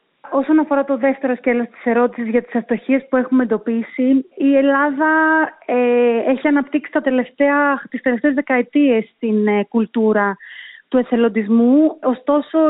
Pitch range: 235-275 Hz